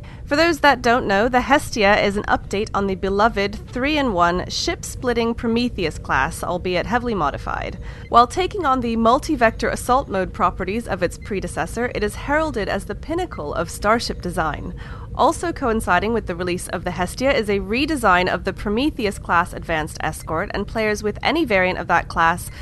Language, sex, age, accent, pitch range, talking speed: English, female, 30-49, American, 185-245 Hz, 170 wpm